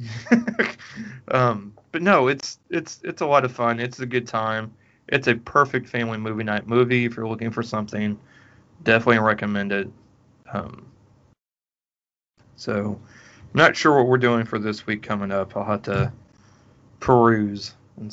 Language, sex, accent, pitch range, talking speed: English, male, American, 110-125 Hz, 150 wpm